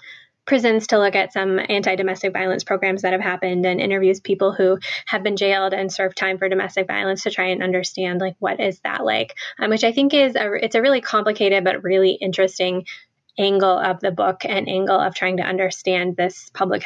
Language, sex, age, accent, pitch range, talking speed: English, female, 10-29, American, 185-205 Hz, 210 wpm